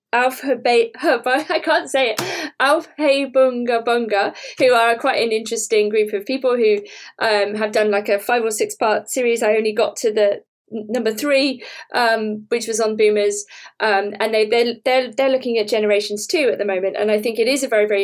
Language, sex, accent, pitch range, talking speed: English, female, British, 210-255 Hz, 205 wpm